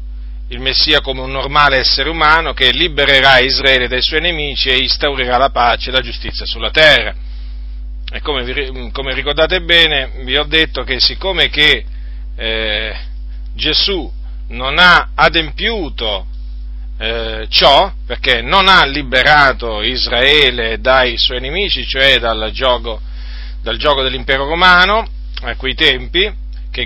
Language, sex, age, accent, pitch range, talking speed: Italian, male, 40-59, native, 105-145 Hz, 125 wpm